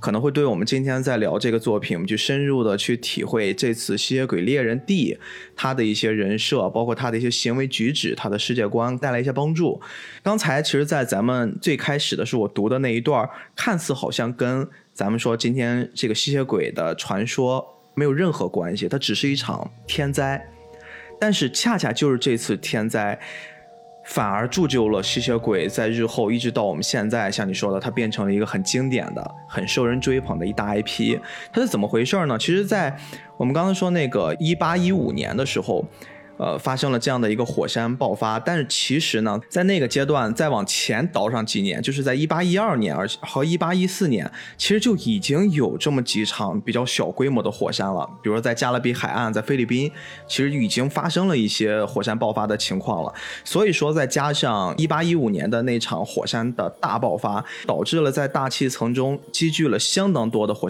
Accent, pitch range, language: native, 115-160 Hz, Chinese